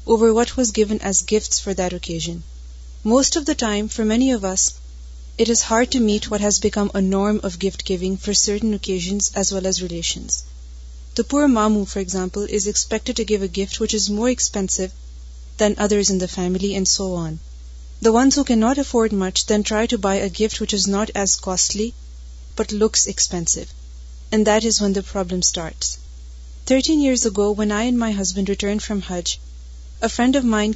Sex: female